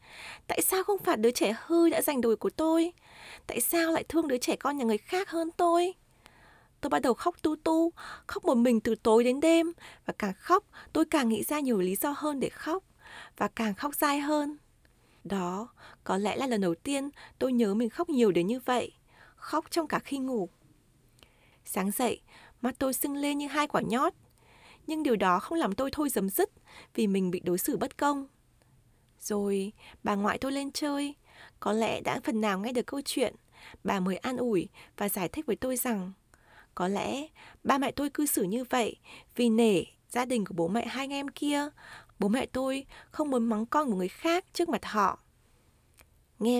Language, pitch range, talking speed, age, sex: Vietnamese, 210-300 Hz, 205 wpm, 20-39, female